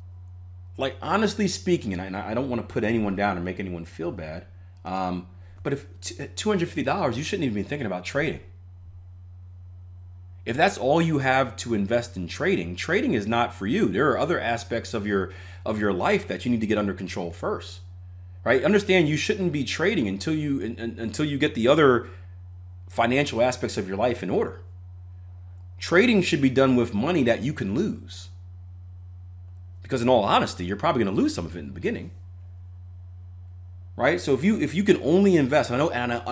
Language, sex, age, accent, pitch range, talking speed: English, male, 30-49, American, 90-120 Hz, 190 wpm